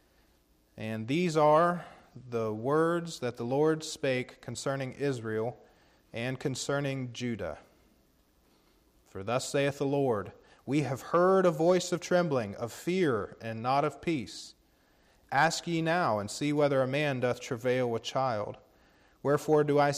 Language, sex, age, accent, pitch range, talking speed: English, male, 40-59, American, 115-145 Hz, 140 wpm